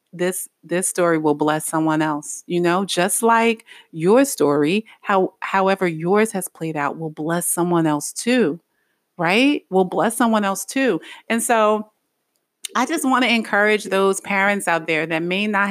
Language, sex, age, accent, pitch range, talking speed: English, female, 30-49, American, 170-220 Hz, 170 wpm